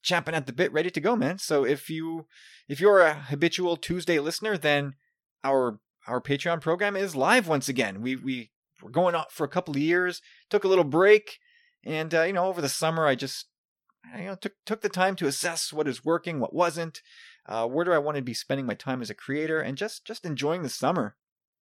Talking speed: 230 wpm